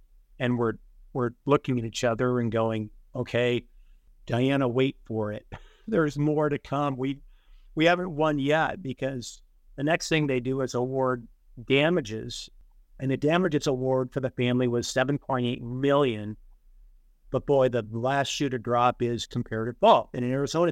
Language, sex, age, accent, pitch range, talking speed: English, male, 50-69, American, 125-155 Hz, 160 wpm